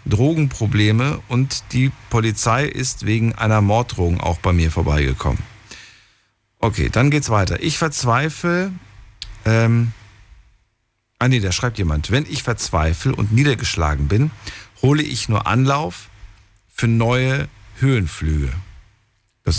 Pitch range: 95-125 Hz